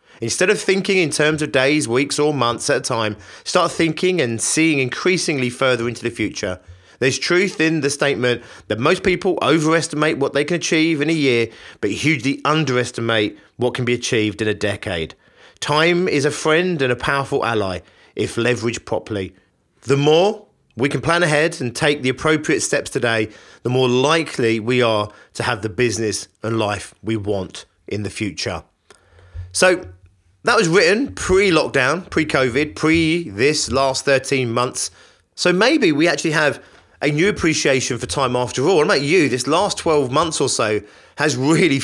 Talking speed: 175 wpm